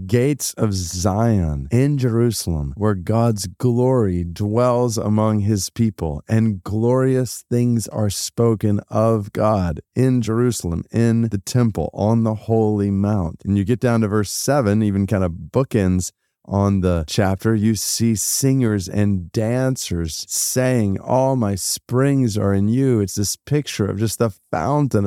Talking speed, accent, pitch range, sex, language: 145 wpm, American, 105-140 Hz, male, English